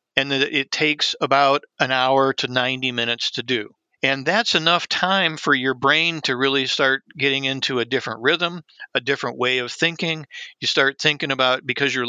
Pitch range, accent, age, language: 130-145 Hz, American, 50-69, English